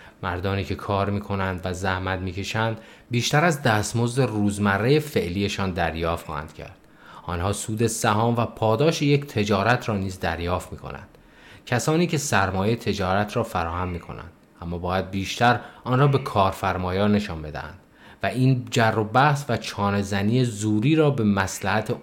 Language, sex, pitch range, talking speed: Persian, male, 95-120 Hz, 145 wpm